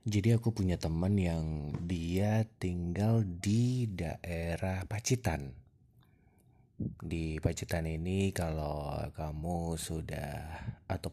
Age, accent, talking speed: 30-49, native, 90 wpm